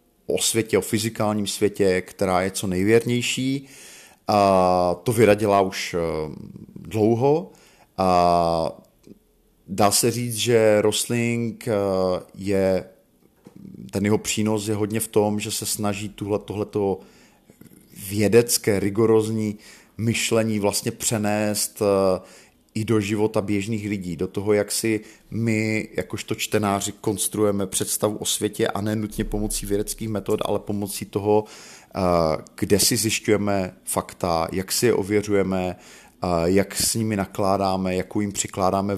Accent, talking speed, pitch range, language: native, 120 wpm, 95-110 Hz, Czech